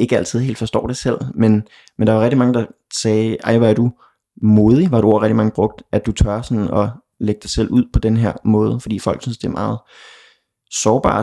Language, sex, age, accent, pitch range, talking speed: Danish, male, 20-39, native, 105-115 Hz, 235 wpm